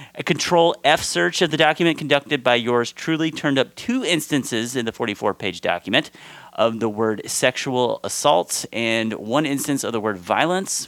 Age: 30-49